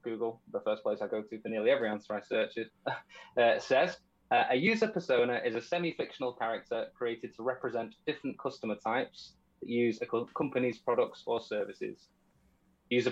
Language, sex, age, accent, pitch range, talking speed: English, male, 20-39, British, 110-140 Hz, 165 wpm